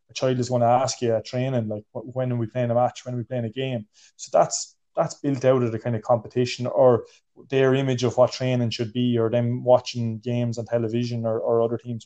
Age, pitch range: 20-39, 120-130 Hz